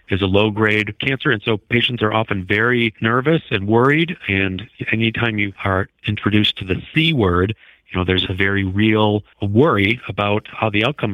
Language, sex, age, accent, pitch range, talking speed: English, male, 50-69, American, 105-125 Hz, 180 wpm